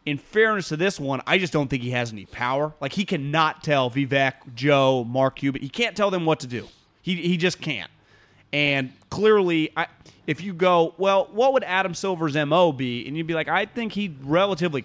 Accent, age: American, 30-49